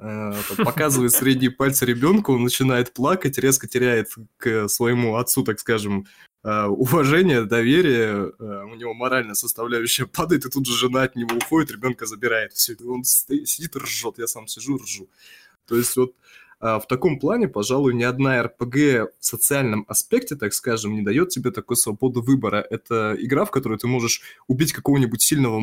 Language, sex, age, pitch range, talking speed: Russian, male, 20-39, 115-135 Hz, 160 wpm